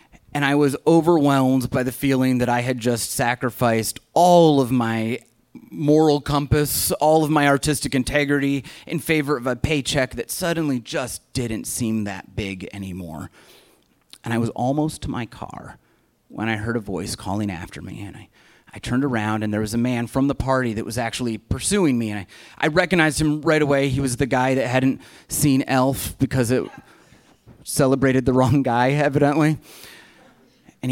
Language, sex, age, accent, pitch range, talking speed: English, male, 30-49, American, 110-140 Hz, 175 wpm